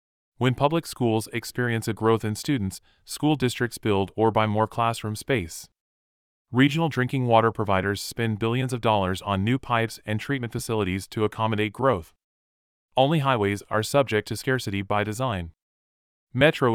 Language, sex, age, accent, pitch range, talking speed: English, male, 30-49, American, 100-125 Hz, 150 wpm